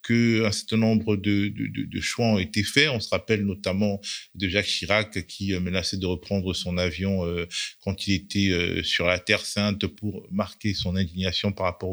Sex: male